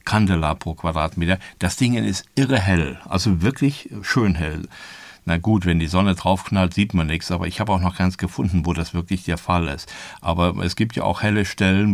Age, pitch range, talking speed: 60-79, 85-95 Hz, 210 wpm